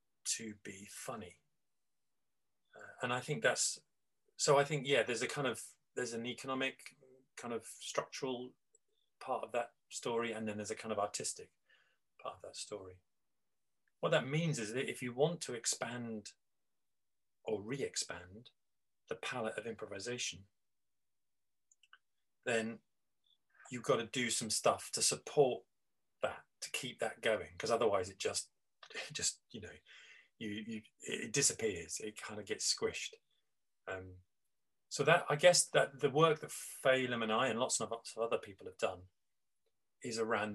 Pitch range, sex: 105-140 Hz, male